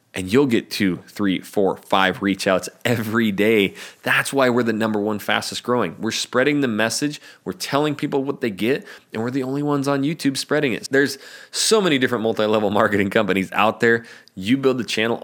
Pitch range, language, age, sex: 100-120 Hz, English, 20-39, male